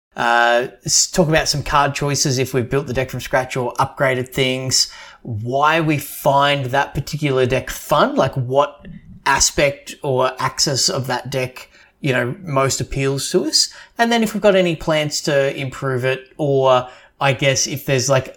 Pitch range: 120-145 Hz